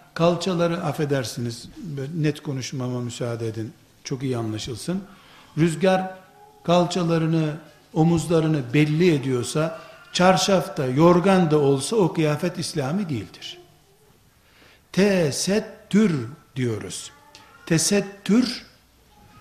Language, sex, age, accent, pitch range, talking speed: Turkish, male, 60-79, native, 145-200 Hz, 80 wpm